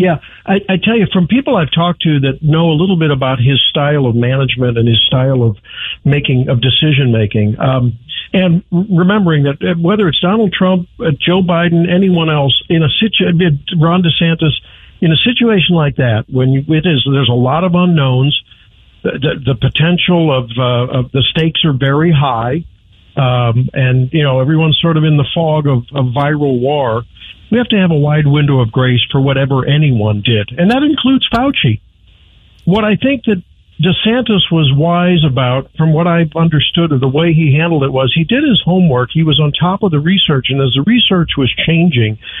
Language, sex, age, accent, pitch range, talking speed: English, male, 50-69, American, 130-170 Hz, 195 wpm